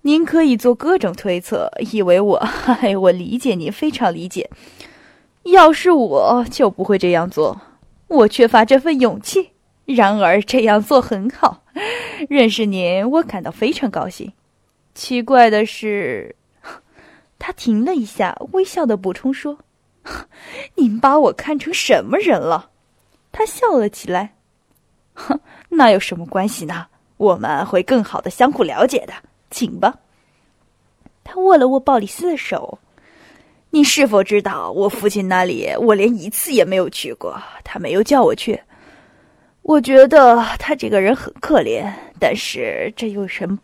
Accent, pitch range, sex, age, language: native, 205-295 Hz, female, 10-29, Chinese